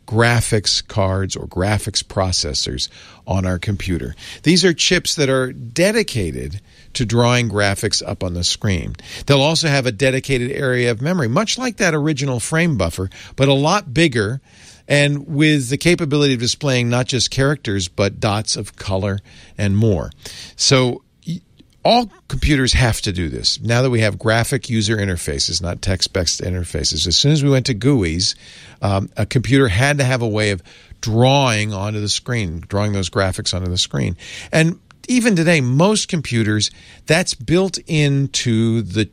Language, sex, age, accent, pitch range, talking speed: English, male, 50-69, American, 100-135 Hz, 165 wpm